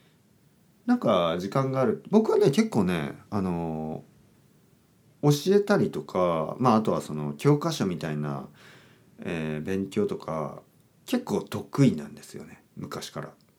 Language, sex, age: Japanese, male, 40-59